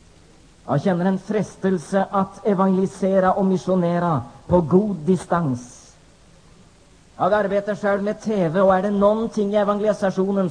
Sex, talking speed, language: male, 125 wpm, Swedish